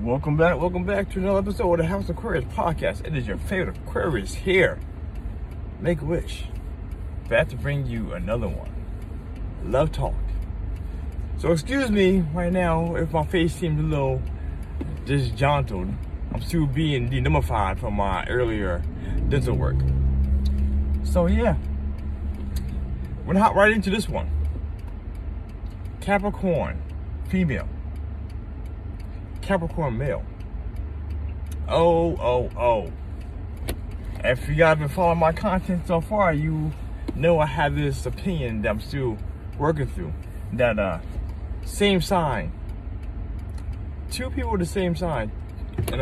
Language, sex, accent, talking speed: English, male, American, 130 wpm